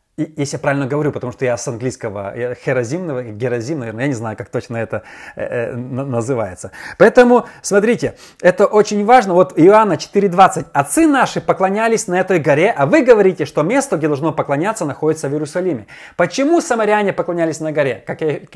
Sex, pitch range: male, 140-210 Hz